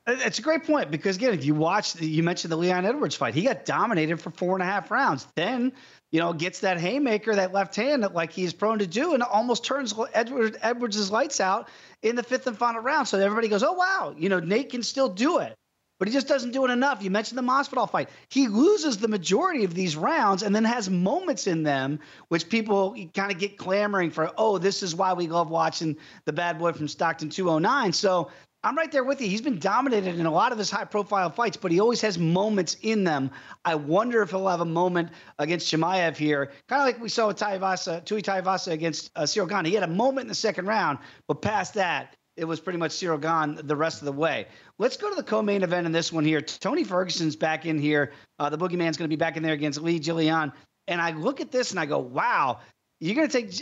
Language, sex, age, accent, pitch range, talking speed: English, male, 30-49, American, 165-230 Hz, 240 wpm